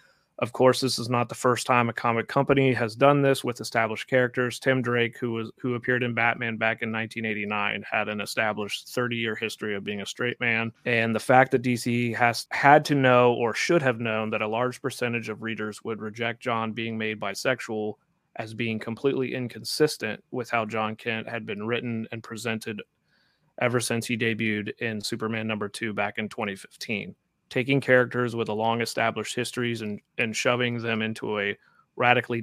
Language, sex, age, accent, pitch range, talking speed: English, male, 30-49, American, 110-125 Hz, 185 wpm